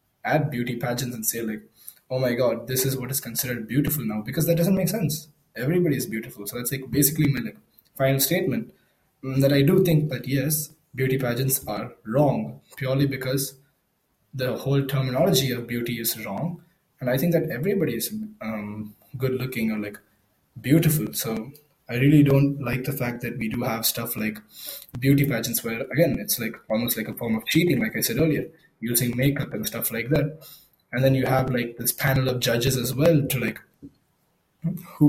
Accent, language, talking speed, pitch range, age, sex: Indian, English, 190 wpm, 120-150 Hz, 20-39, male